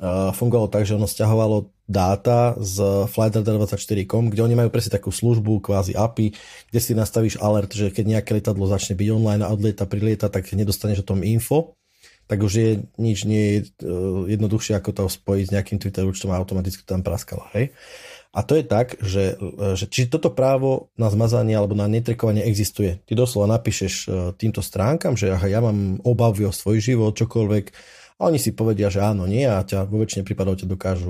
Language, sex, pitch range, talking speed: Slovak, male, 95-110 Hz, 185 wpm